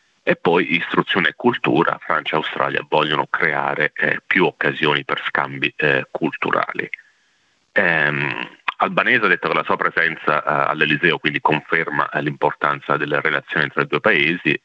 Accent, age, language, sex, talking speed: native, 40-59, Italian, male, 150 wpm